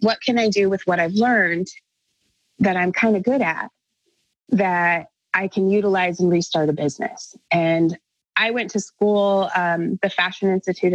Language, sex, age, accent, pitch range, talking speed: English, female, 20-39, American, 175-205 Hz, 170 wpm